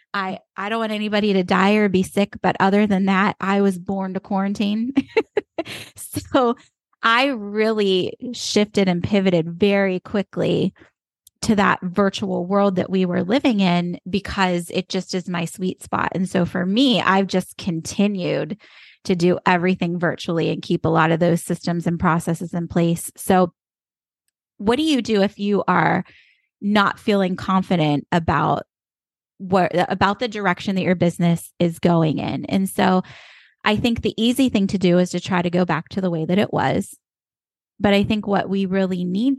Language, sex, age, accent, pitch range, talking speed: English, female, 20-39, American, 180-210 Hz, 175 wpm